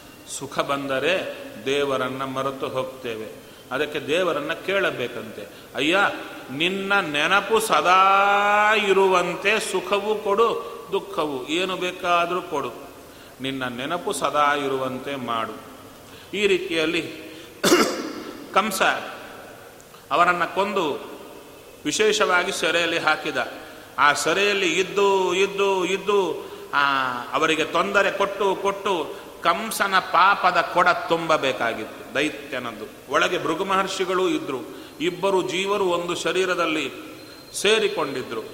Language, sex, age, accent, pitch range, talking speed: Kannada, male, 30-49, native, 160-200 Hz, 85 wpm